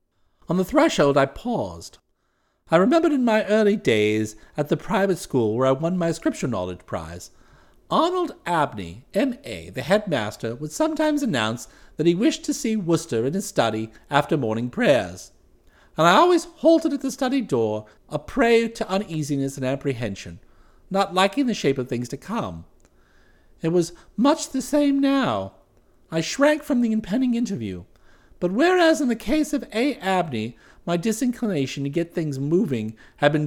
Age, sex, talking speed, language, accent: 50-69, male, 165 wpm, English, American